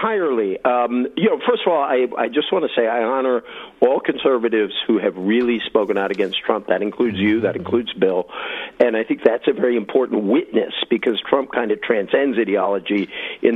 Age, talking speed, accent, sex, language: 50-69, 200 wpm, American, male, English